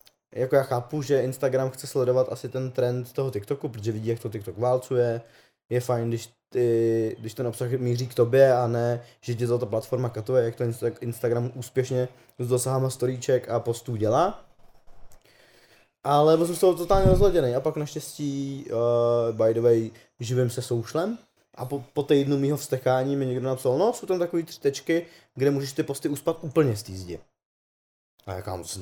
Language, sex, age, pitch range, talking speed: Czech, male, 20-39, 115-135 Hz, 185 wpm